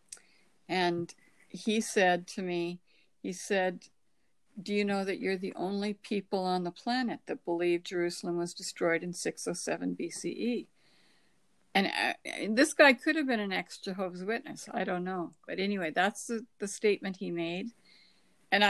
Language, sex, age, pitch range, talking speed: English, female, 60-79, 185-220 Hz, 155 wpm